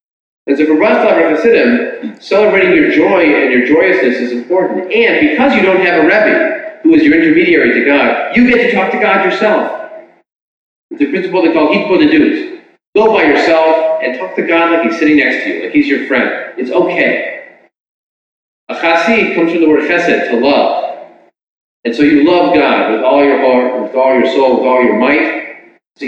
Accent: American